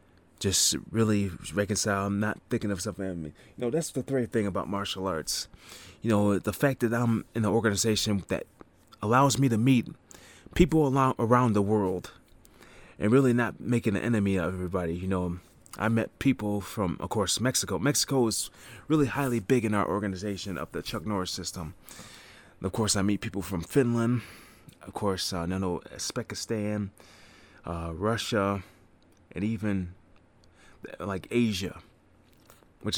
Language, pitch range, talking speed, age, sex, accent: English, 90-110 Hz, 155 wpm, 30-49, male, American